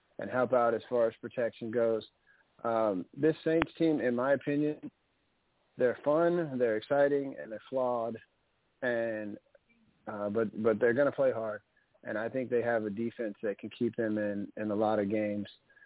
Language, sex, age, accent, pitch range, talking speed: English, male, 40-59, American, 115-130 Hz, 180 wpm